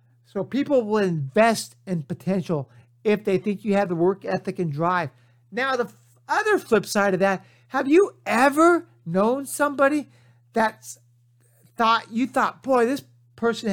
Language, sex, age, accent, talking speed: English, male, 50-69, American, 155 wpm